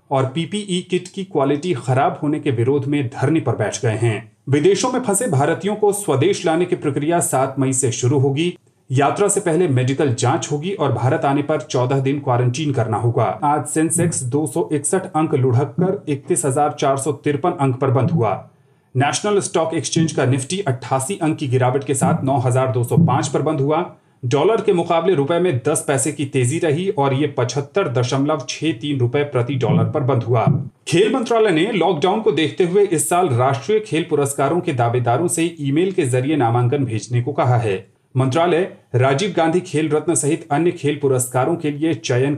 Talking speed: 175 wpm